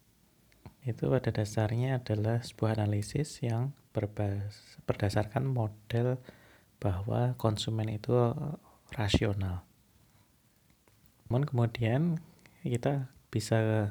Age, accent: 20-39, native